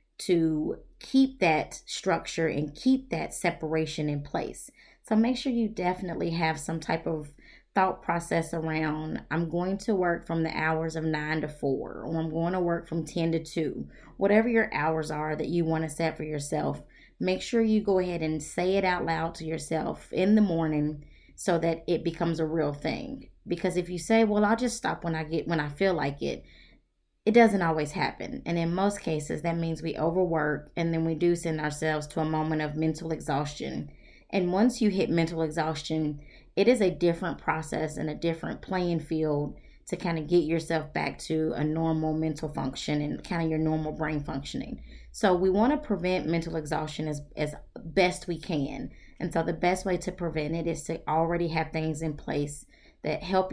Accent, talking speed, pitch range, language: American, 200 wpm, 155-180 Hz, English